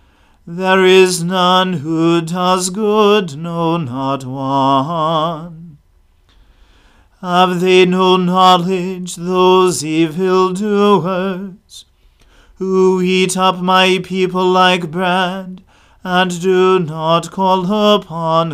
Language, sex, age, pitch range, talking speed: English, male, 40-59, 165-185 Hz, 90 wpm